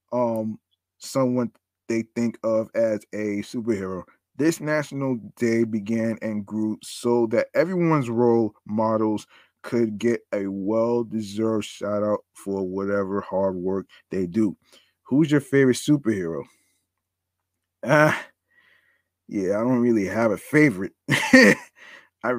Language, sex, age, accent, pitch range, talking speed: English, male, 20-39, American, 105-125 Hz, 115 wpm